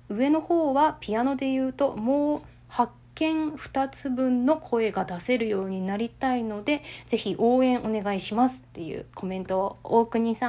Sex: female